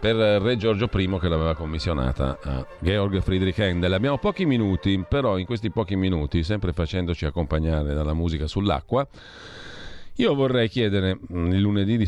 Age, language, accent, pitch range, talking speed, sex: 40-59, Italian, native, 80-100 Hz, 155 wpm, male